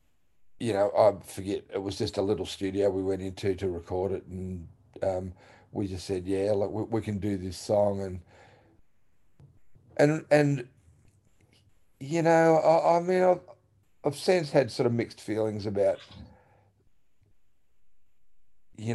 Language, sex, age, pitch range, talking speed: English, male, 50-69, 95-120 Hz, 150 wpm